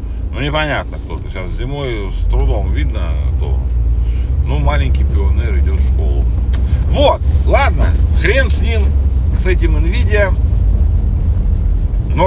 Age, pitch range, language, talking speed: 40-59, 75-85 Hz, Russian, 115 wpm